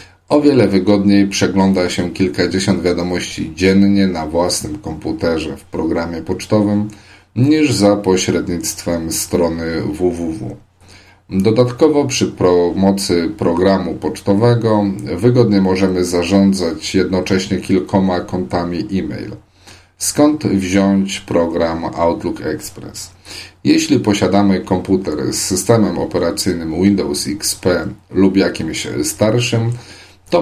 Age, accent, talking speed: 40-59, native, 95 wpm